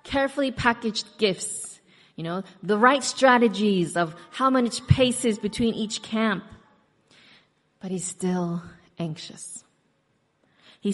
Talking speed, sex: 110 wpm, female